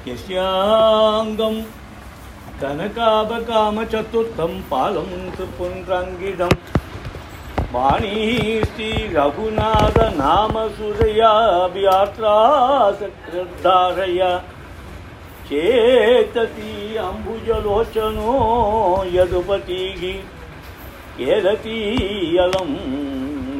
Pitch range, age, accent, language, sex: 145-220 Hz, 50-69, native, Tamil, male